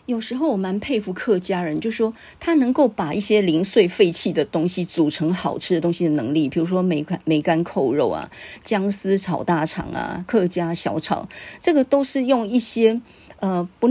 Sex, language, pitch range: female, Chinese, 175-225 Hz